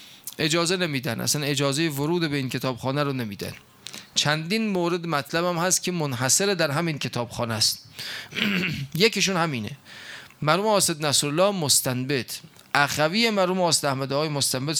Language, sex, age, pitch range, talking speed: Persian, male, 30-49, 135-175 Hz, 120 wpm